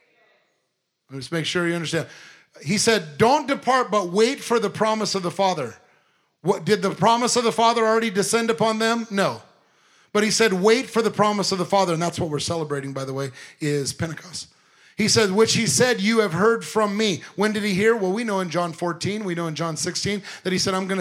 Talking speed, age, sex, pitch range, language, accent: 230 wpm, 30-49, male, 170-215 Hz, English, American